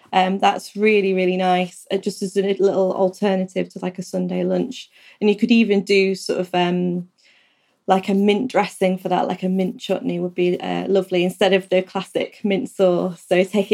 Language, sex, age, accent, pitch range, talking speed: English, female, 20-39, British, 185-205 Hz, 200 wpm